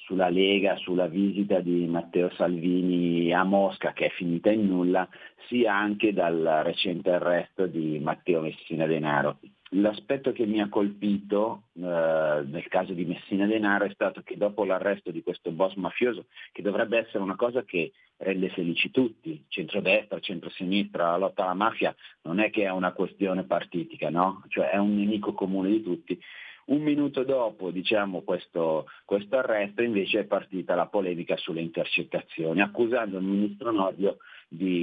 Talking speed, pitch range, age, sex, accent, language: 155 wpm, 90-105 Hz, 40-59, male, native, Italian